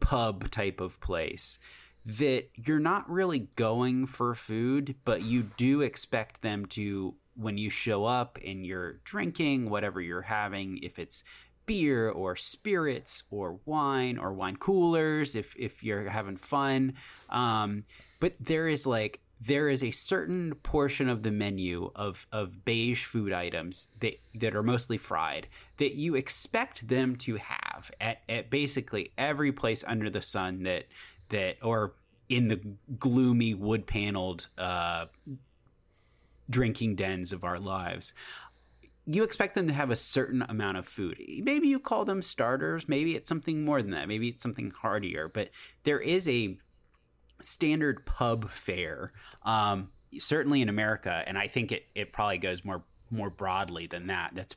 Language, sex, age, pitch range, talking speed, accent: English, male, 30-49, 95-135 Hz, 155 wpm, American